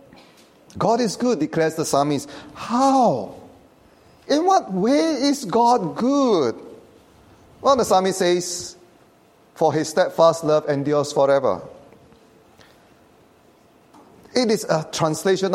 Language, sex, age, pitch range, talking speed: English, male, 40-59, 165-220 Hz, 105 wpm